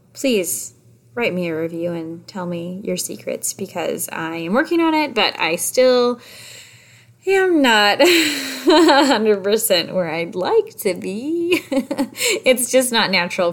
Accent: American